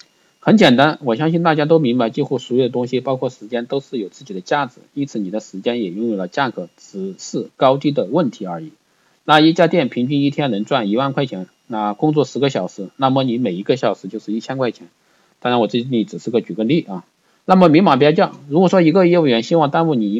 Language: Chinese